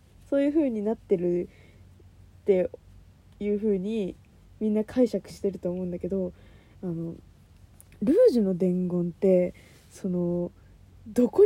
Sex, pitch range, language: female, 175-290 Hz, Japanese